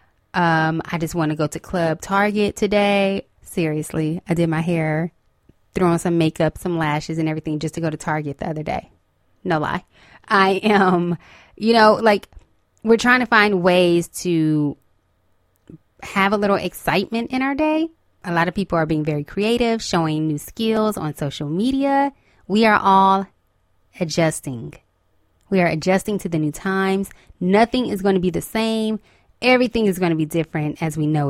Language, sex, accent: English, female, American